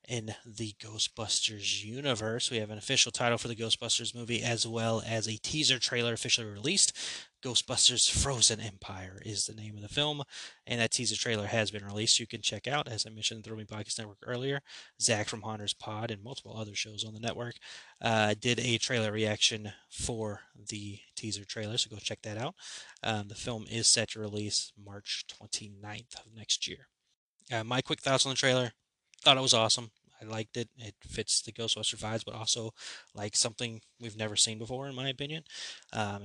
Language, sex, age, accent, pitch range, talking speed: English, male, 20-39, American, 105-120 Hz, 195 wpm